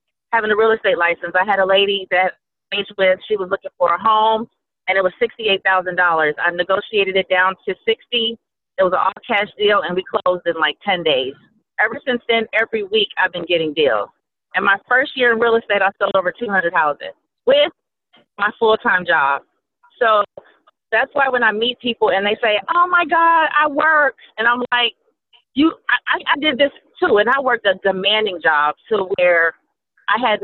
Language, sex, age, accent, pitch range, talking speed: English, female, 30-49, American, 175-230 Hz, 195 wpm